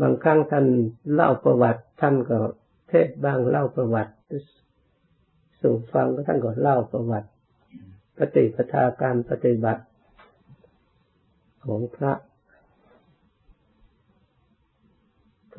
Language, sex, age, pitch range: Thai, male, 60-79, 115-140 Hz